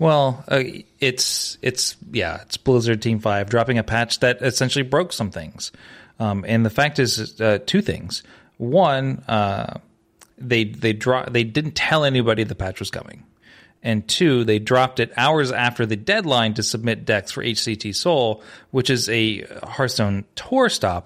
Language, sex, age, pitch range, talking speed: English, male, 30-49, 105-130 Hz, 170 wpm